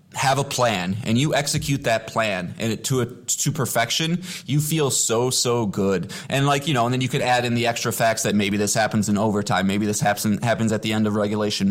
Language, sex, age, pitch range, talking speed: English, male, 20-39, 110-140 Hz, 240 wpm